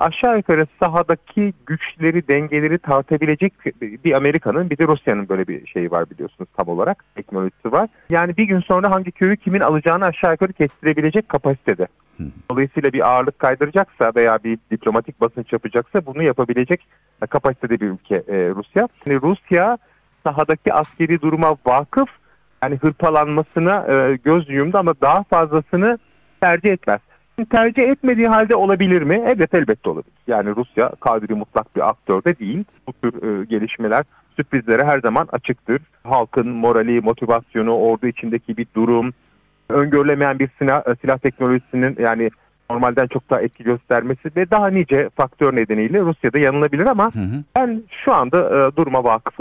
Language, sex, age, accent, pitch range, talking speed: Turkish, male, 40-59, native, 120-175 Hz, 140 wpm